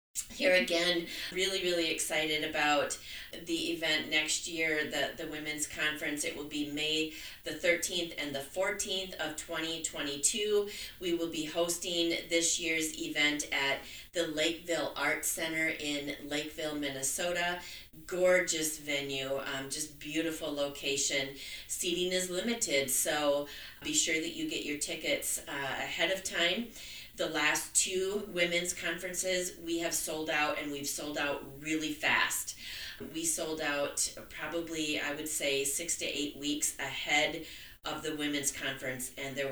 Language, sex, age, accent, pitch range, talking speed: English, female, 30-49, American, 145-170 Hz, 145 wpm